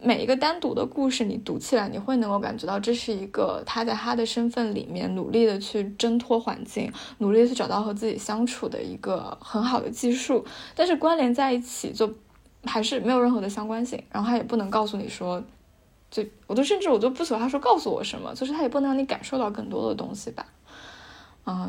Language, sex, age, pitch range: Chinese, female, 20-39, 210-250 Hz